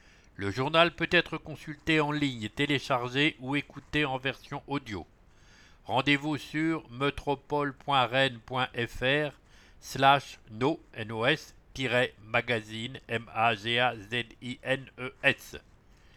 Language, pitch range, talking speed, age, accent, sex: English, 115-145 Hz, 65 wpm, 60-79, French, male